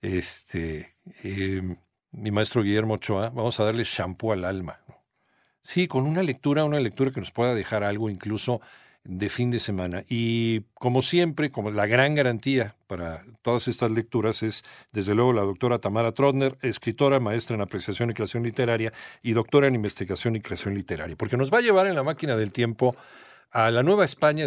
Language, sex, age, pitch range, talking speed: Spanish, male, 50-69, 105-140 Hz, 180 wpm